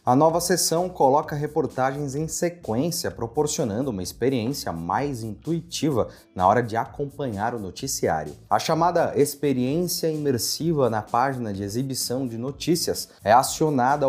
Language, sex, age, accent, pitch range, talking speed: Portuguese, male, 30-49, Brazilian, 120-150 Hz, 130 wpm